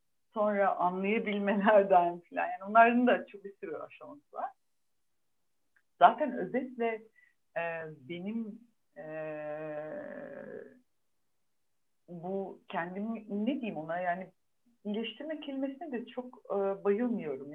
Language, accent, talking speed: Turkish, native, 90 wpm